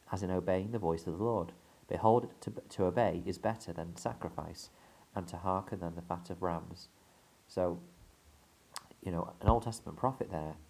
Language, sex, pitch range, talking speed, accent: English, male, 85-100 Hz, 180 wpm, British